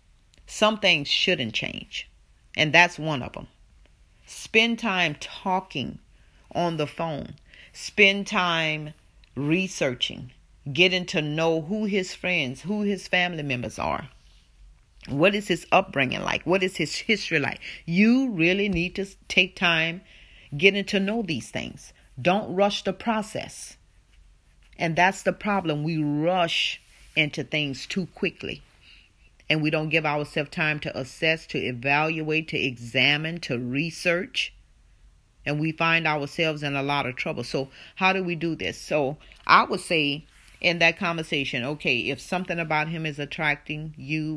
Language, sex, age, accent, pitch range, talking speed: English, female, 40-59, American, 140-180 Hz, 145 wpm